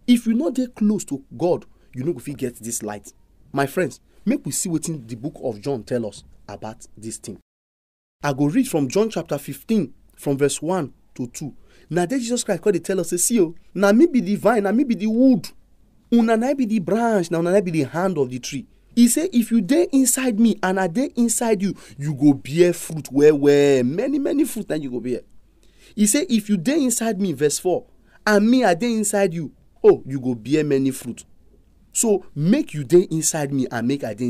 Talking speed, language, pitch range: 230 wpm, English, 145-240 Hz